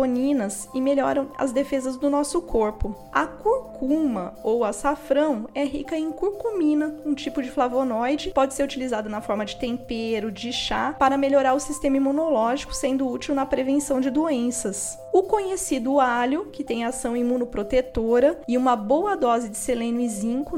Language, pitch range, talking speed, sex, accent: Portuguese, 230-285 Hz, 155 wpm, female, Brazilian